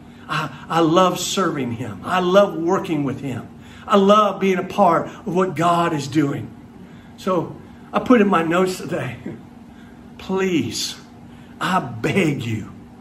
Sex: male